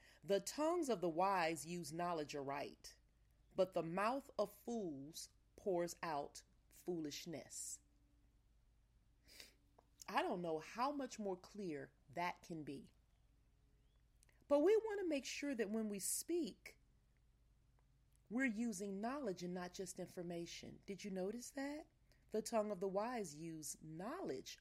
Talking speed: 130 wpm